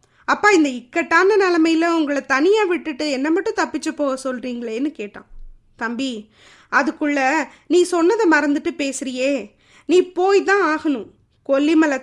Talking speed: 120 wpm